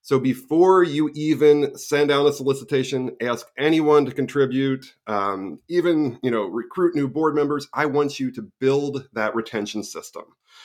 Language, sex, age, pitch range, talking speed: English, male, 30-49, 110-140 Hz, 160 wpm